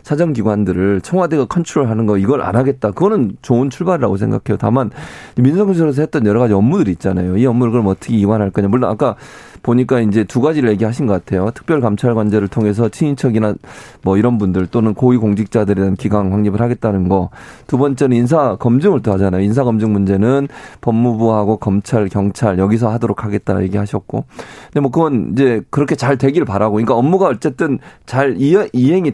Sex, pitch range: male, 105-135 Hz